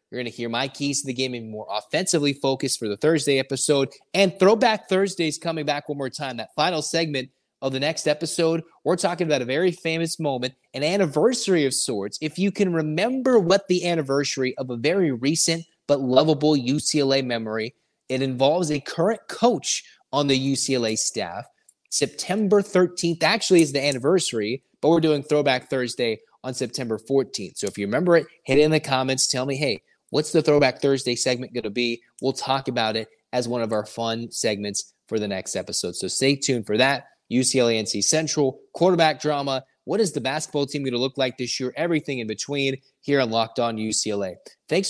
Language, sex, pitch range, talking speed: English, male, 125-155 Hz, 195 wpm